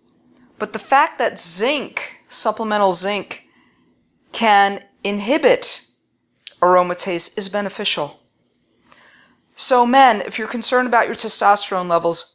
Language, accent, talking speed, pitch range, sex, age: English, American, 100 wpm, 175-220 Hz, female, 40-59